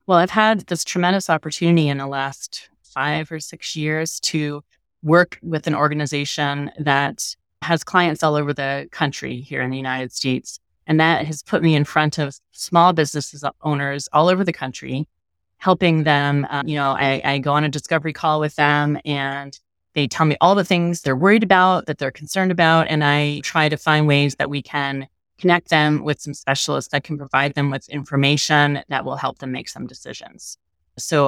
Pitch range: 140-165 Hz